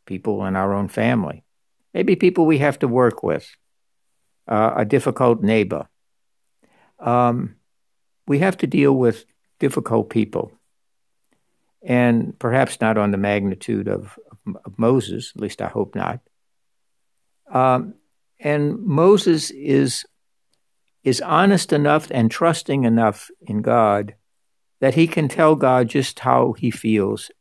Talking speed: 130 wpm